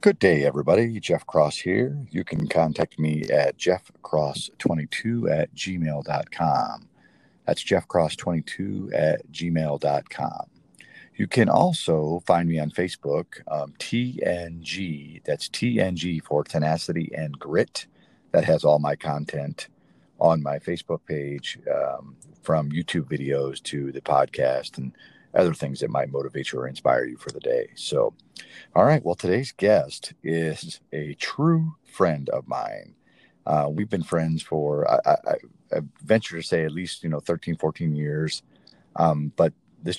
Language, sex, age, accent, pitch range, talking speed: English, male, 40-59, American, 75-90 Hz, 145 wpm